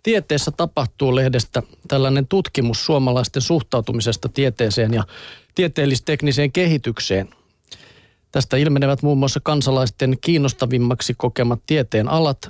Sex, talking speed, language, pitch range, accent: male, 95 wpm, Finnish, 125-150 Hz, native